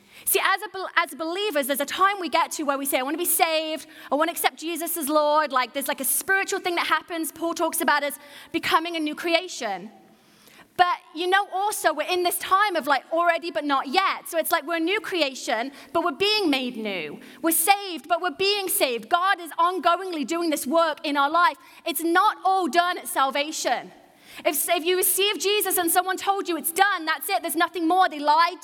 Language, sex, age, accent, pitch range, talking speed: English, female, 30-49, British, 310-375 Hz, 225 wpm